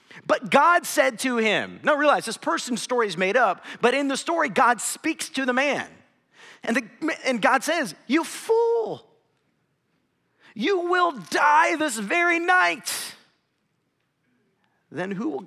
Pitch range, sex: 225-315 Hz, male